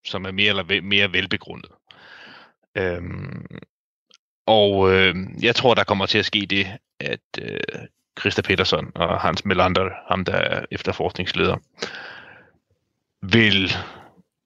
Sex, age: male, 30-49